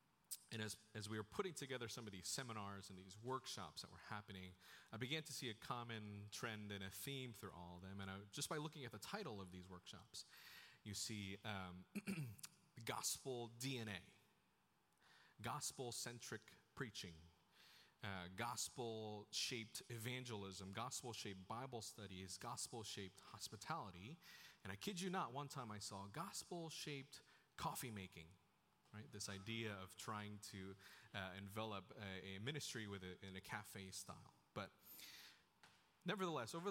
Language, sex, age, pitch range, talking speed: English, male, 30-49, 100-135 Hz, 140 wpm